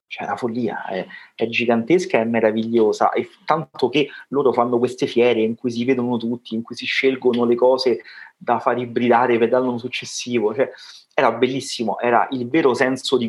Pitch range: 115-135 Hz